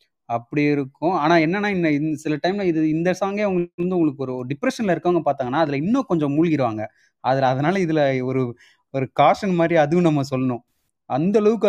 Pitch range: 125-165 Hz